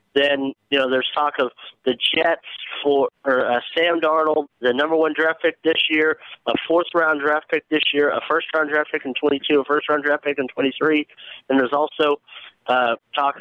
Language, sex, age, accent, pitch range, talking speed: English, male, 40-59, American, 125-155 Hz, 195 wpm